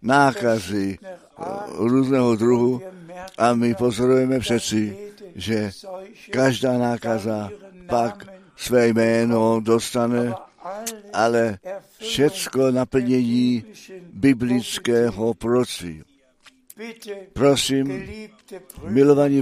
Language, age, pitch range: Czech, 60-79, 115-180 Hz